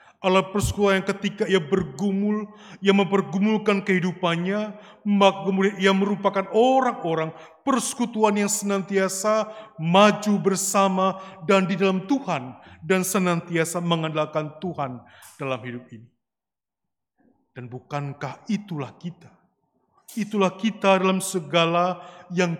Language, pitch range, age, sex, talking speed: Indonesian, 140-190 Hz, 30-49, male, 100 wpm